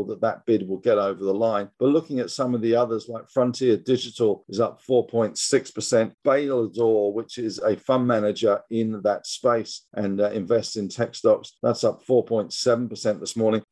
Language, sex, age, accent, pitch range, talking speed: English, male, 50-69, British, 105-125 Hz, 180 wpm